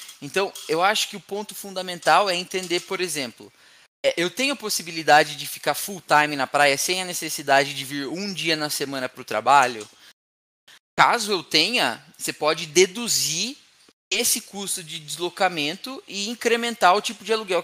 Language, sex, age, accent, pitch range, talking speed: Portuguese, male, 20-39, Brazilian, 150-215 Hz, 165 wpm